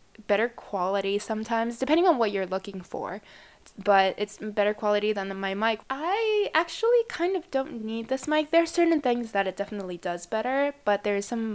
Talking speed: 185 wpm